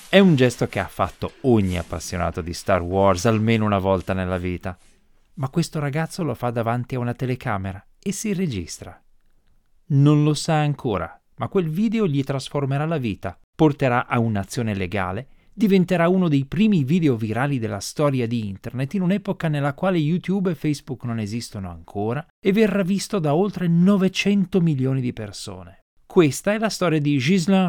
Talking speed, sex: 170 wpm, male